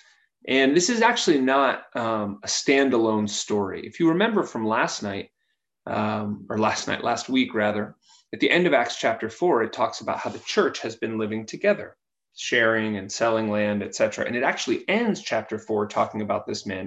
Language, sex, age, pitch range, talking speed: English, male, 30-49, 110-170 Hz, 190 wpm